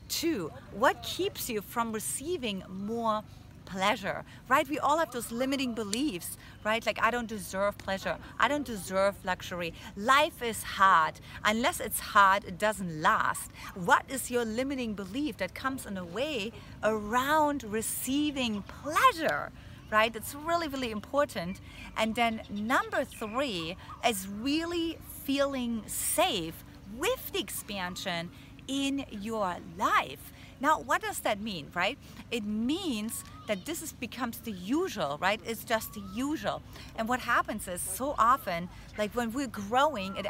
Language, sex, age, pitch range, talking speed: English, female, 40-59, 215-280 Hz, 145 wpm